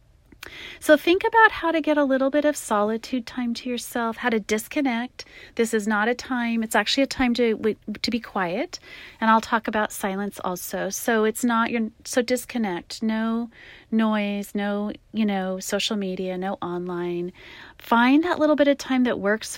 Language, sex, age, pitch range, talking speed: English, female, 30-49, 195-245 Hz, 180 wpm